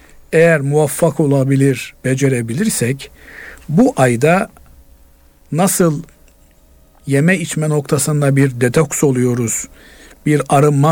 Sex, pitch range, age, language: male, 130-160 Hz, 50-69, Turkish